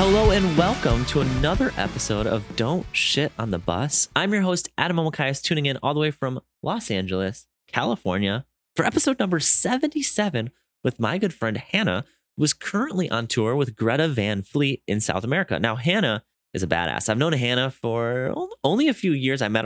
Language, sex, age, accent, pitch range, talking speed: English, male, 30-49, American, 110-165 Hz, 190 wpm